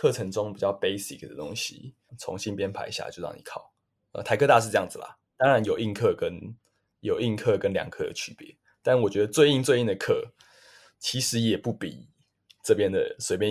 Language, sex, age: Chinese, male, 20-39